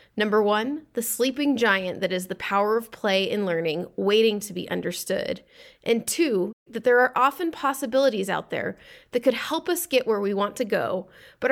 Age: 20-39